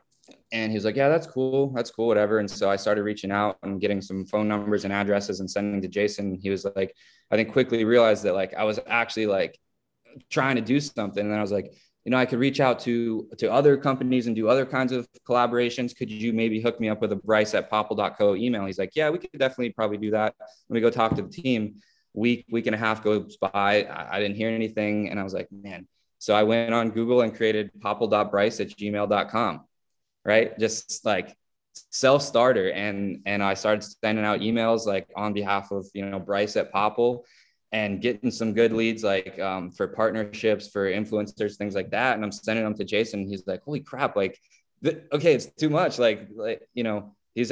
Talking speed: 220 wpm